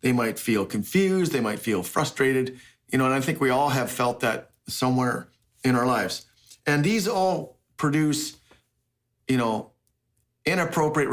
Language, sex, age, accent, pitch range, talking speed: English, male, 50-69, American, 115-140 Hz, 155 wpm